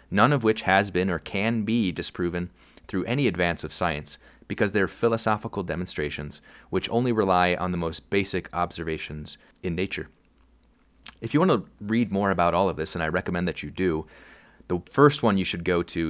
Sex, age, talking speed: male, 30-49, 190 wpm